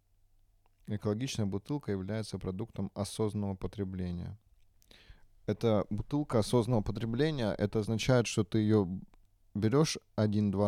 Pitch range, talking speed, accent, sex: 95-110 Hz, 95 wpm, native, male